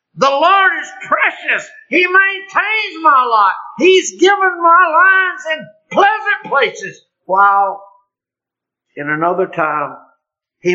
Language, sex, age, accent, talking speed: English, male, 50-69, American, 110 wpm